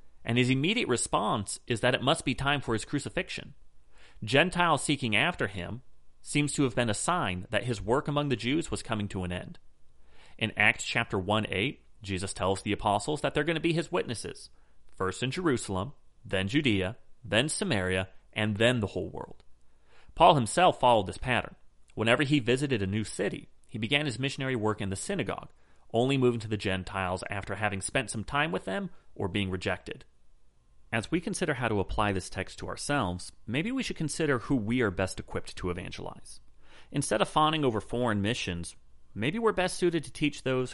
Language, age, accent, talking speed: English, 30-49, American, 190 wpm